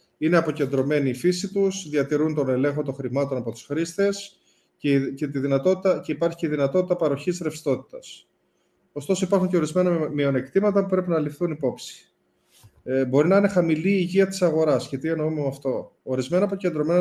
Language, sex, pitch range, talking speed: Greek, male, 135-175 Hz, 160 wpm